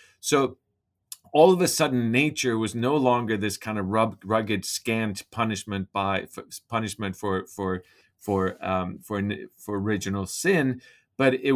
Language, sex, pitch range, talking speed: English, male, 105-130 Hz, 150 wpm